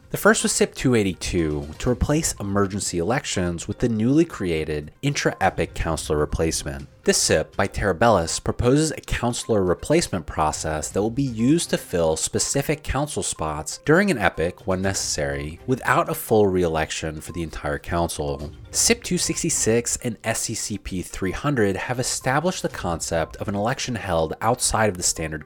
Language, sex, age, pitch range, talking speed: English, male, 30-49, 85-135 Hz, 150 wpm